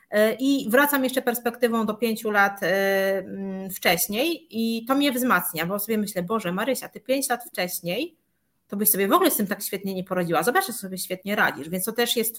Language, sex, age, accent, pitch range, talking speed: Polish, female, 30-49, native, 185-225 Hz, 200 wpm